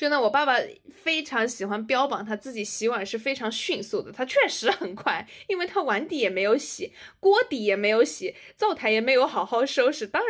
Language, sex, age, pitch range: Chinese, female, 20-39, 205-270 Hz